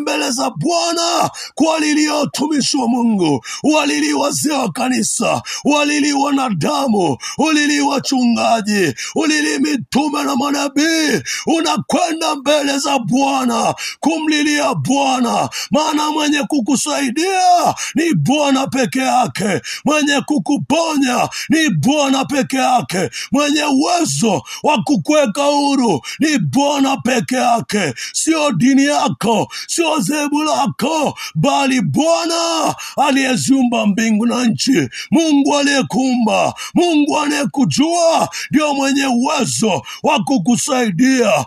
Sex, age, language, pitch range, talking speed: male, 60-79, Swahili, 245-300 Hz, 95 wpm